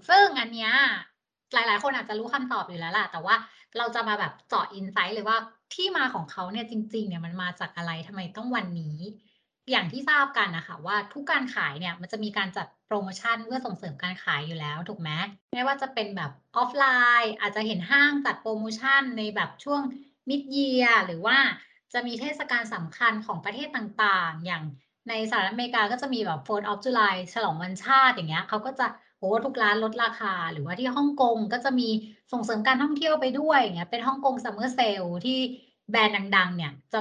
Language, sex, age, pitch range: Thai, female, 20-39, 185-250 Hz